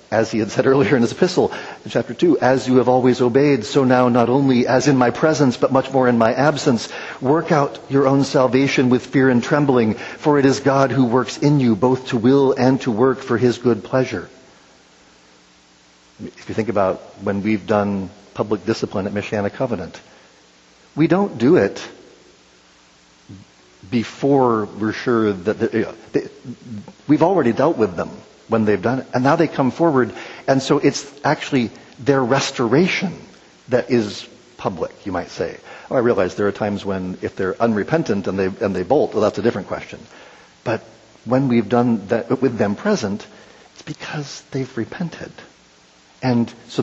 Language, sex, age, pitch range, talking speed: English, male, 50-69, 105-135 Hz, 175 wpm